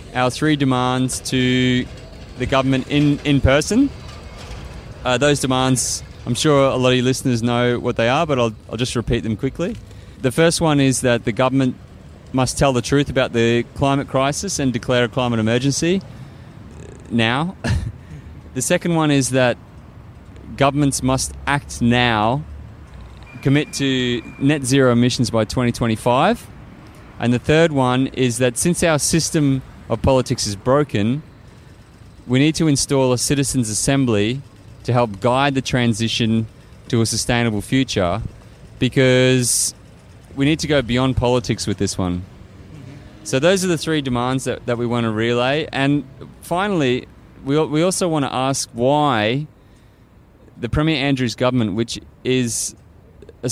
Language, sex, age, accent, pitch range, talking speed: English, male, 30-49, Australian, 115-140 Hz, 150 wpm